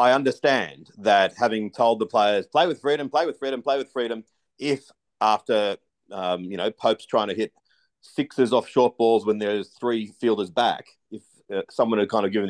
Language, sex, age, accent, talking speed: English, male, 40-59, Australian, 195 wpm